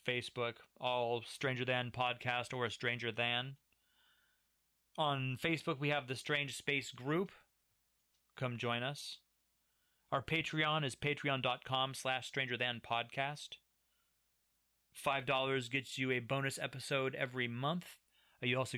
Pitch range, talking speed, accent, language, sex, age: 120-140 Hz, 120 wpm, American, English, male, 30-49